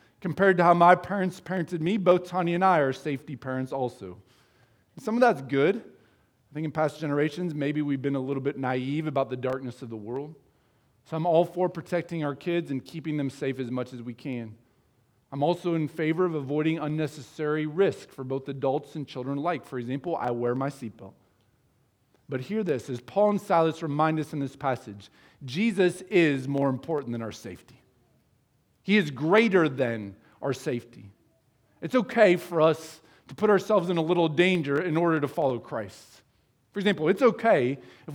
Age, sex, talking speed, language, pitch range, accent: 40-59, male, 185 wpm, English, 130-180 Hz, American